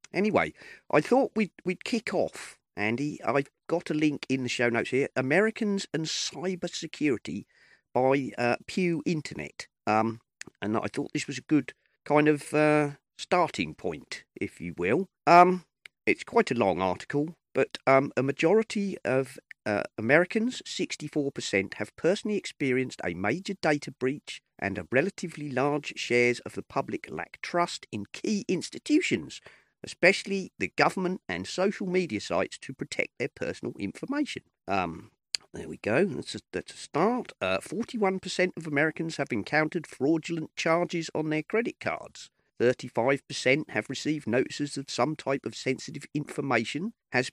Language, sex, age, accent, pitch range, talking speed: English, male, 40-59, British, 130-185 Hz, 150 wpm